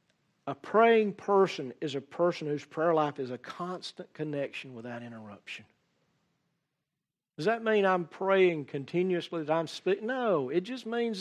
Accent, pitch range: American, 170-225 Hz